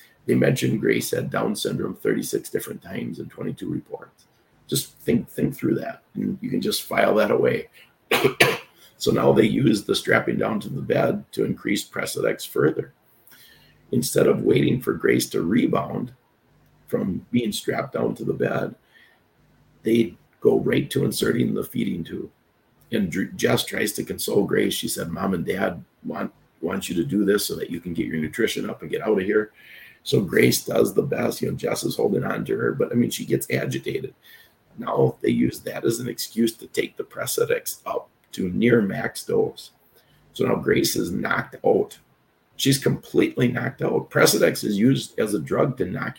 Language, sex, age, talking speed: English, male, 50-69, 185 wpm